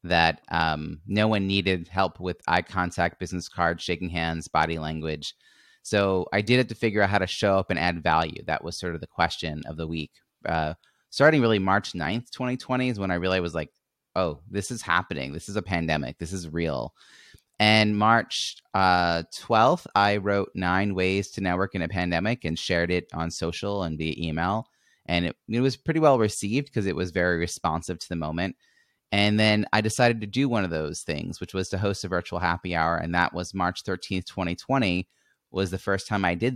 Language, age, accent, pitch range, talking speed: English, 30-49, American, 85-105 Hz, 210 wpm